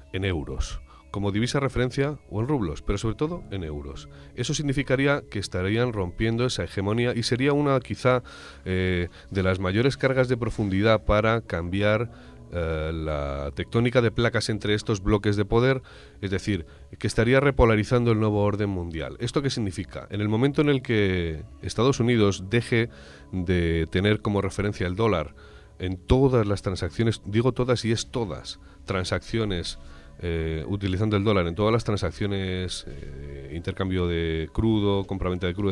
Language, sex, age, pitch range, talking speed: Spanish, male, 40-59, 85-115 Hz, 160 wpm